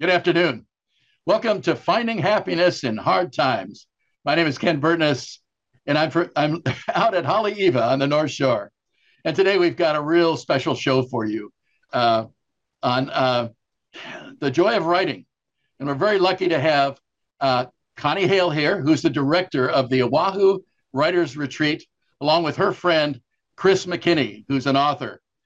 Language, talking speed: English, 165 wpm